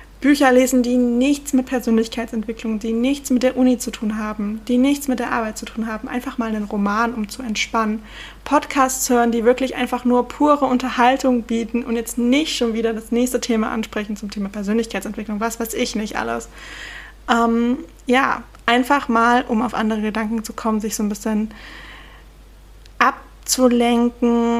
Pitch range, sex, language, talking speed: 220-255 Hz, female, German, 170 wpm